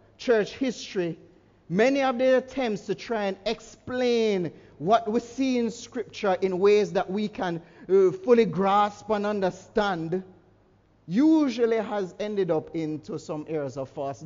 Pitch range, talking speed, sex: 155-205 Hz, 145 wpm, male